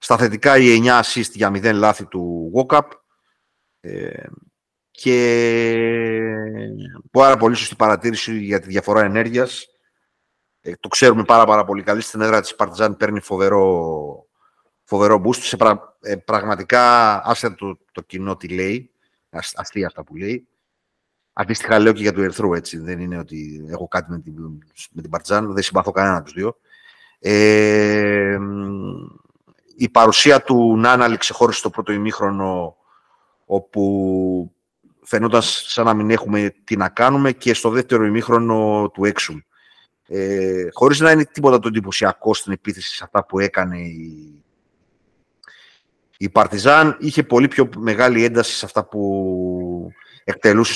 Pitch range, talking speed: 95-120 Hz, 140 wpm